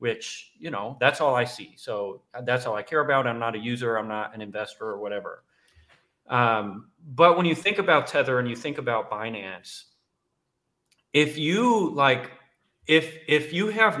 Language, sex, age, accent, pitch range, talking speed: English, male, 30-49, American, 115-150 Hz, 180 wpm